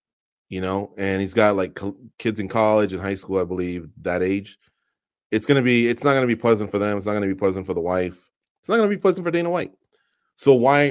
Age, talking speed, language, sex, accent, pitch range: 30-49, 265 wpm, English, male, American, 95-125 Hz